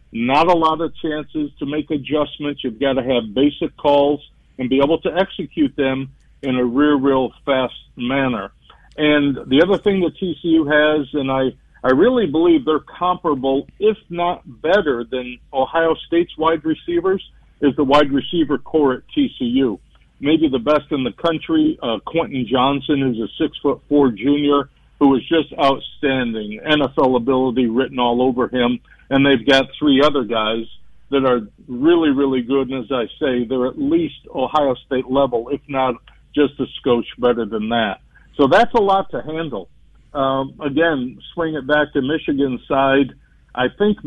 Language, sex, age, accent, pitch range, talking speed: English, male, 50-69, American, 130-160 Hz, 170 wpm